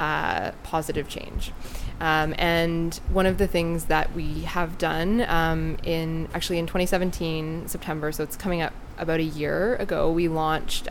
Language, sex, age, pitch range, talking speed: English, female, 20-39, 155-175 Hz, 160 wpm